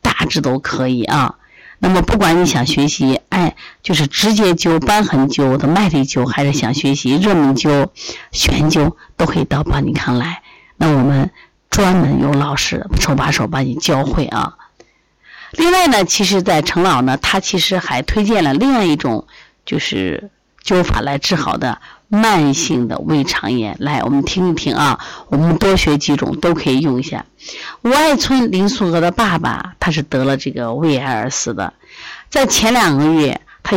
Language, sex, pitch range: Chinese, female, 140-195 Hz